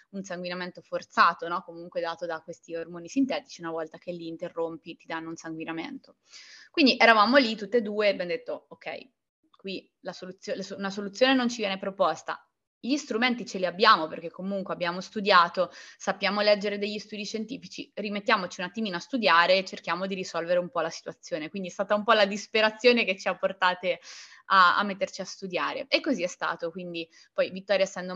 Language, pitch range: Italian, 175-210 Hz